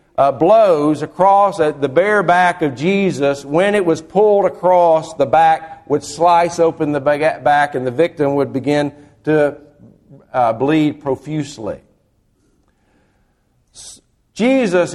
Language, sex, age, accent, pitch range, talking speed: English, male, 50-69, American, 145-195 Hz, 120 wpm